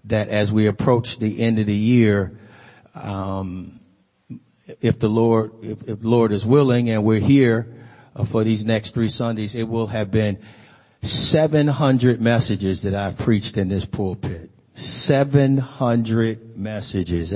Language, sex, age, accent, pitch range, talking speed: English, male, 50-69, American, 105-120 Hz, 140 wpm